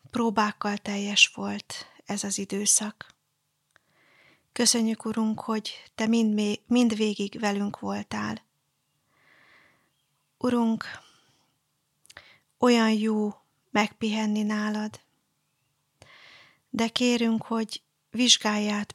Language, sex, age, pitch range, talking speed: Hungarian, female, 30-49, 210-230 Hz, 75 wpm